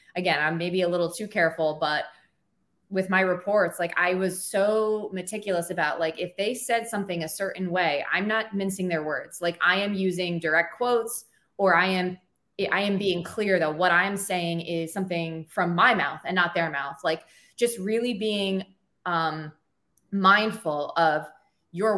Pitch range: 170-210 Hz